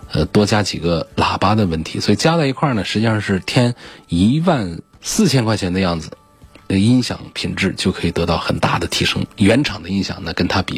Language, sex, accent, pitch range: Chinese, male, native, 90-125 Hz